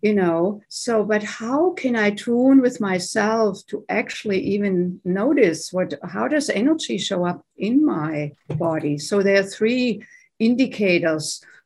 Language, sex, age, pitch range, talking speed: English, female, 60-79, 175-220 Hz, 145 wpm